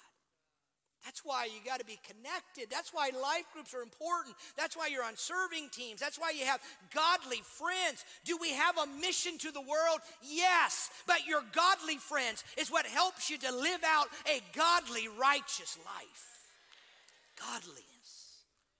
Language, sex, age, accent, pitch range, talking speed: English, male, 40-59, American, 235-310 Hz, 155 wpm